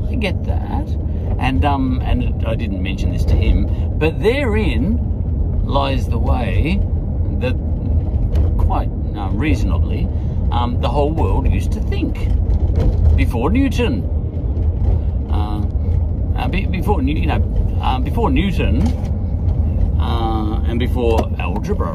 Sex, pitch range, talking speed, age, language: male, 80-95 Hz, 120 wpm, 40-59, English